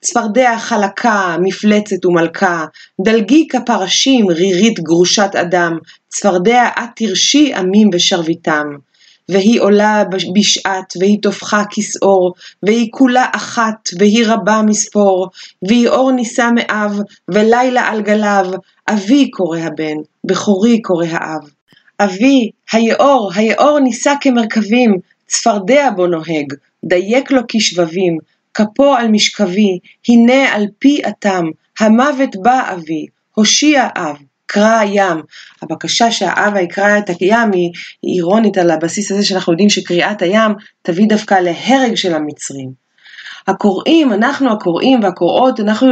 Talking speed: 115 wpm